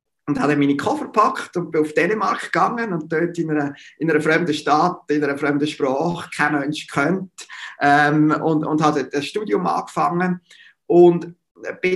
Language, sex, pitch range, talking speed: German, male, 140-165 Hz, 180 wpm